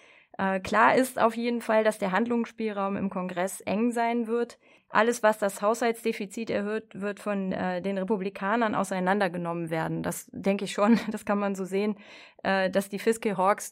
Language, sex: German, female